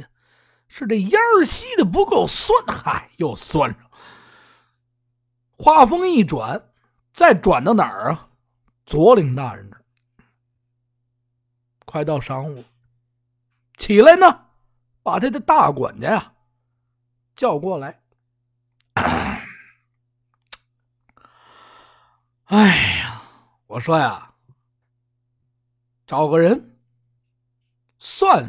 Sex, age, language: male, 50-69, Chinese